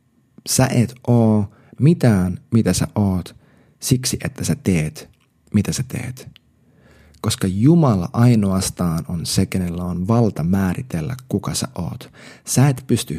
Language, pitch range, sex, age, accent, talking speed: Finnish, 95-125 Hz, male, 30-49, native, 130 wpm